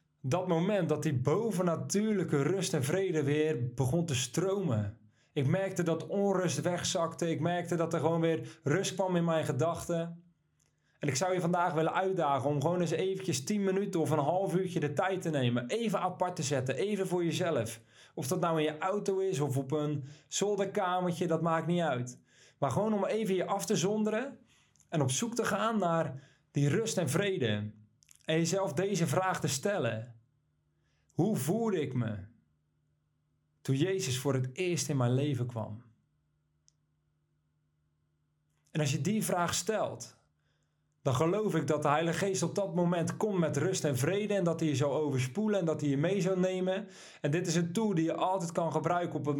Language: Dutch